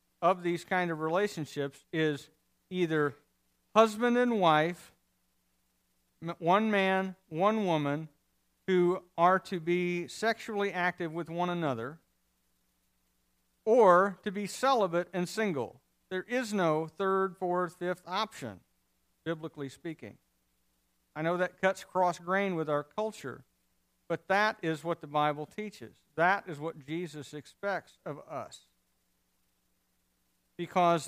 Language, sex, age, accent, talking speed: English, male, 50-69, American, 120 wpm